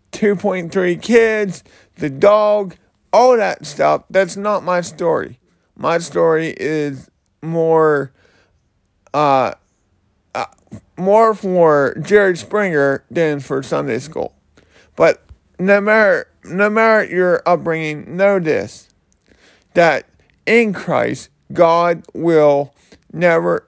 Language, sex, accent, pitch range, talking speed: English, male, American, 145-185 Hz, 105 wpm